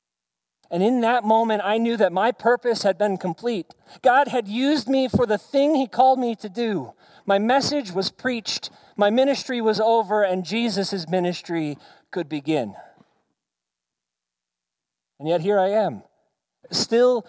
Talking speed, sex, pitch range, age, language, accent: 150 wpm, male, 170-235 Hz, 40-59, English, American